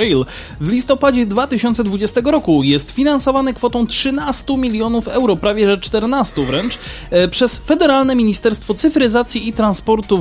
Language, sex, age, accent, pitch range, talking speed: Polish, male, 20-39, native, 180-245 Hz, 120 wpm